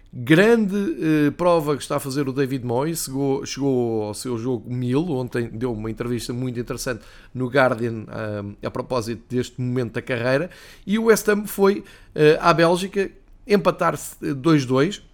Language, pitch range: Portuguese, 125-155 Hz